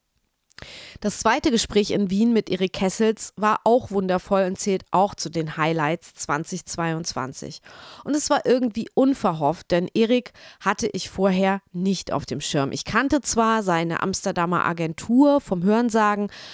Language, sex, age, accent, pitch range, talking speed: German, female, 30-49, German, 180-220 Hz, 145 wpm